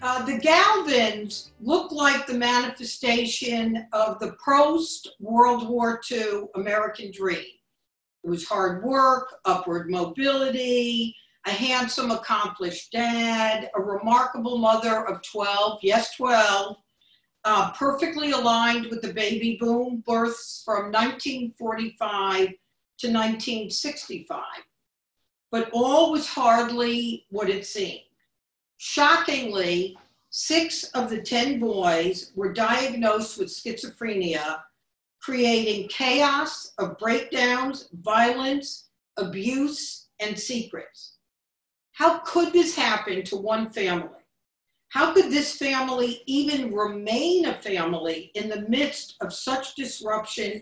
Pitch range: 205-265 Hz